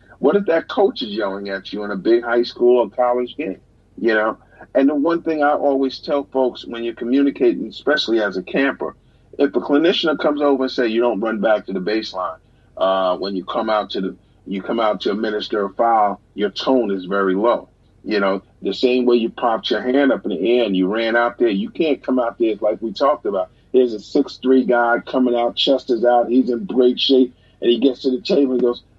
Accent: American